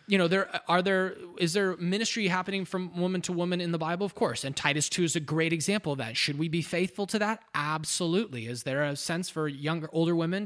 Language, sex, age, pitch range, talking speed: English, male, 20-39, 155-195 Hz, 240 wpm